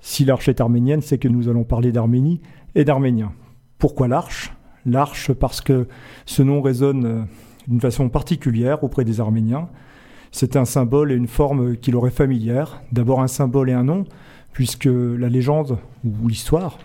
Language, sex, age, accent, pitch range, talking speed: French, male, 40-59, French, 125-145 Hz, 165 wpm